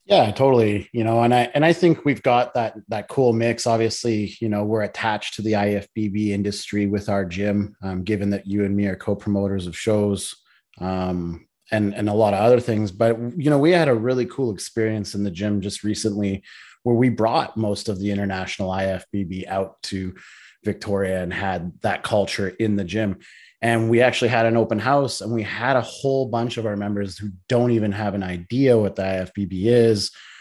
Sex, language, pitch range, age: male, English, 100-115 Hz, 30-49